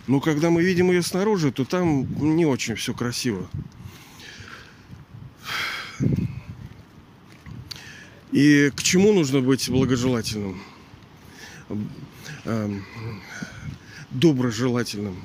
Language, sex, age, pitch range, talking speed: Russian, male, 40-59, 125-160 Hz, 75 wpm